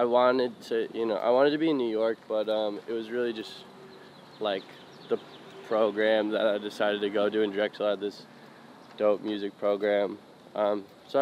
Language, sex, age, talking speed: English, male, 20-39, 195 wpm